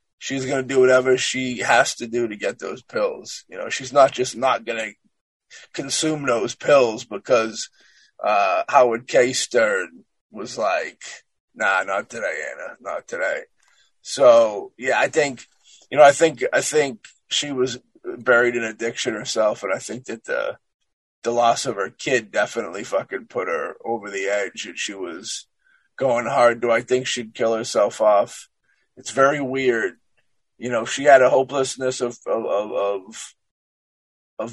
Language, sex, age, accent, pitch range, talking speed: English, male, 20-39, American, 120-145 Hz, 165 wpm